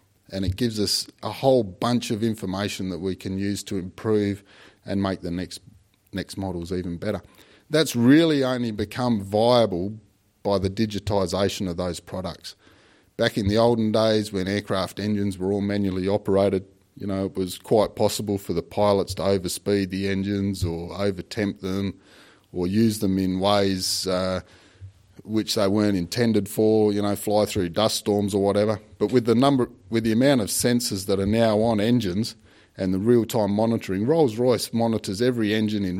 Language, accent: English, Australian